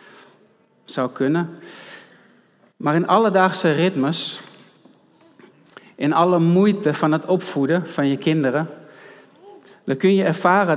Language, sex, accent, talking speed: Dutch, male, Dutch, 105 wpm